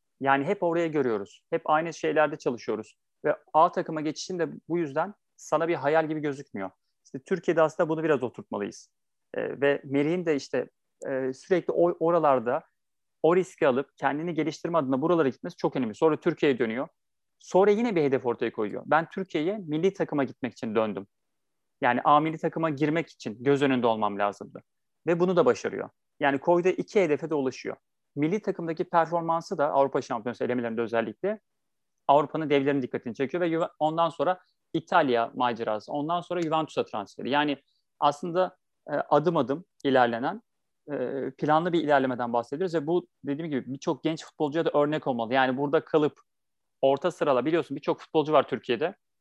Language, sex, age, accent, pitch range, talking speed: Turkish, male, 40-59, native, 140-170 Hz, 160 wpm